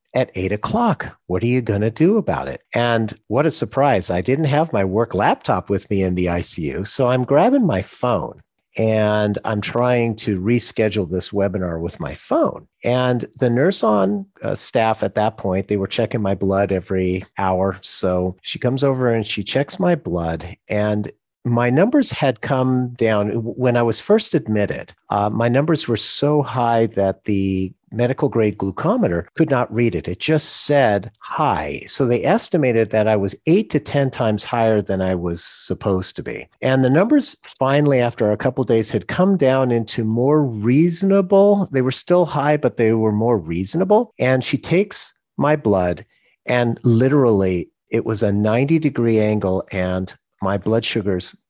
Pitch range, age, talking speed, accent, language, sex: 100-135 Hz, 50-69, 180 wpm, American, English, male